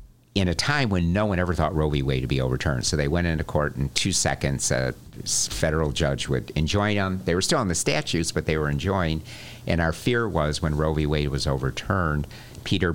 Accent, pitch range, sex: American, 75-95 Hz, male